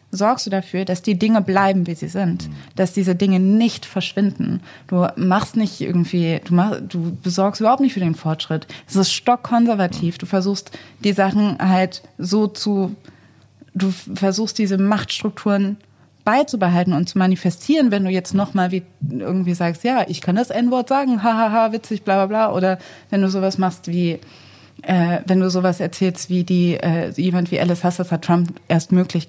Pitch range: 175-215 Hz